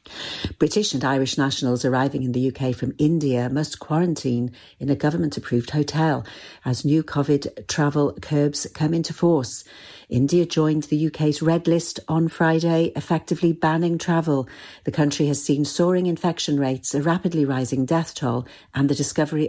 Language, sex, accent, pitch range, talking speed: English, female, British, 135-160 Hz, 155 wpm